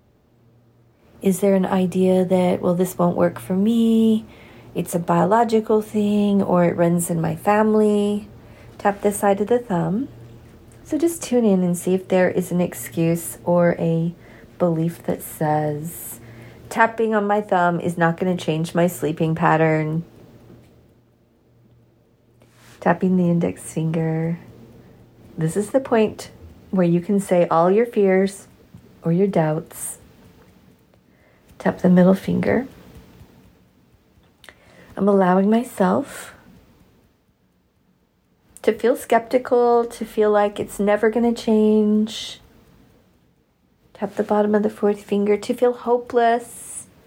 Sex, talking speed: female, 125 wpm